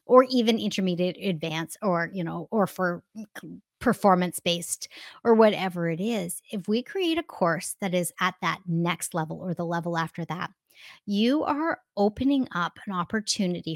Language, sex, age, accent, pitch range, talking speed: English, female, 30-49, American, 180-235 Hz, 155 wpm